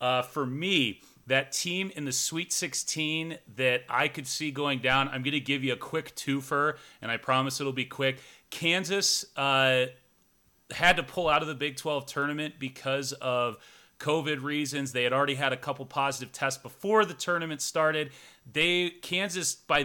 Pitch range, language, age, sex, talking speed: 130-155 Hz, English, 30-49, male, 180 wpm